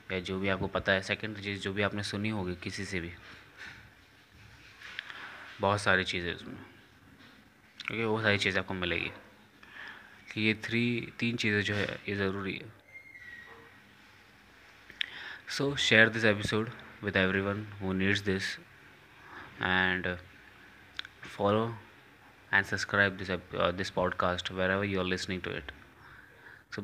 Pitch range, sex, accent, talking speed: 95-105 Hz, male, native, 130 wpm